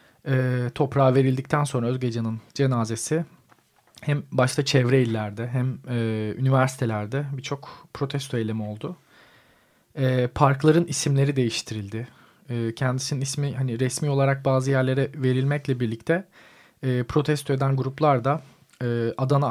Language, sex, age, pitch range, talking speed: Turkish, male, 40-59, 120-140 Hz, 100 wpm